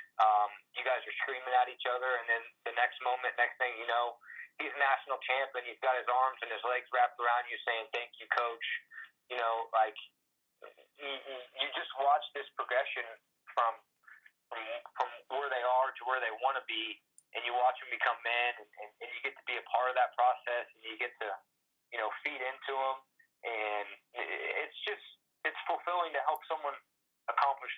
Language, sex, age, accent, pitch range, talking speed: English, male, 20-39, American, 115-155 Hz, 190 wpm